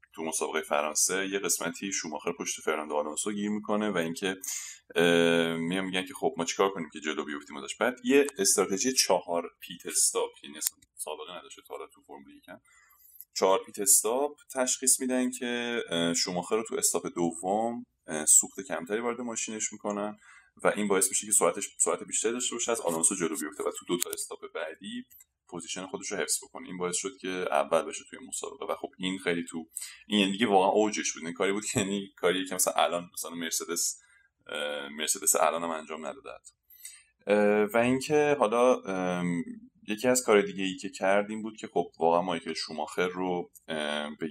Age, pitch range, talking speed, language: 20-39, 85-125 Hz, 175 wpm, Persian